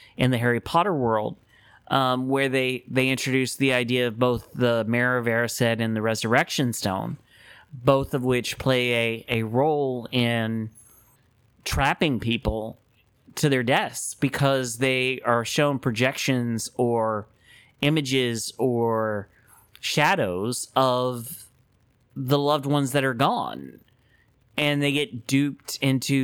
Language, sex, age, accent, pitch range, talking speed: English, male, 30-49, American, 120-140 Hz, 130 wpm